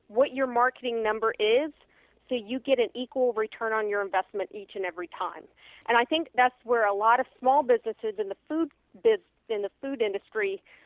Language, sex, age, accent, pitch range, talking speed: English, female, 40-59, American, 210-260 Hz, 200 wpm